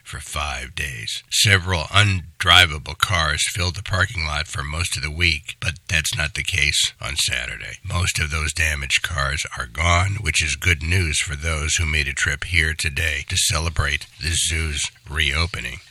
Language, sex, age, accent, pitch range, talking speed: English, male, 60-79, American, 75-95 Hz, 175 wpm